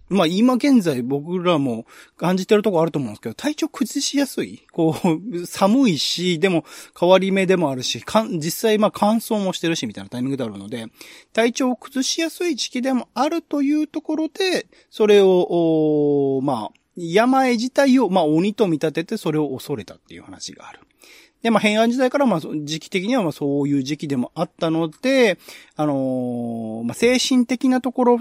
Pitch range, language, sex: 145-225 Hz, Japanese, male